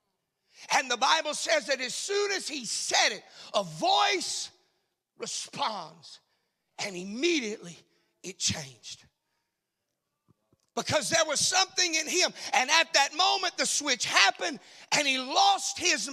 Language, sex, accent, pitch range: English, male, American, 235-330 Hz